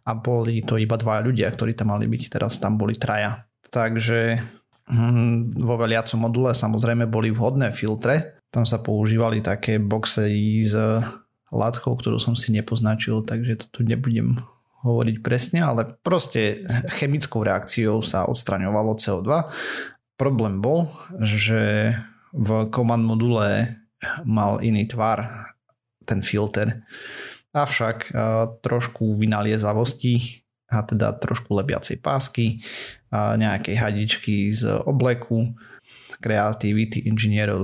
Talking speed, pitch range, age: 120 wpm, 110-120 Hz, 30-49